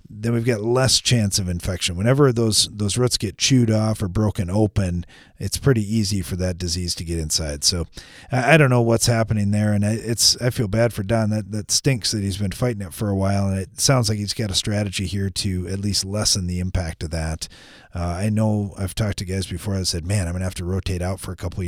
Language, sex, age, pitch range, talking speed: English, male, 40-59, 95-125 Hz, 255 wpm